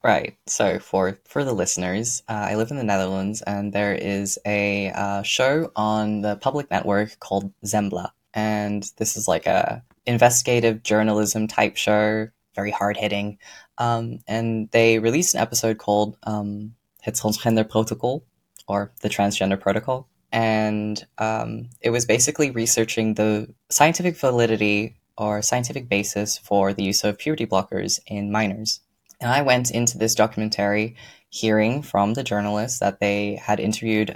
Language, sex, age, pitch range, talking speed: English, female, 10-29, 105-120 Hz, 150 wpm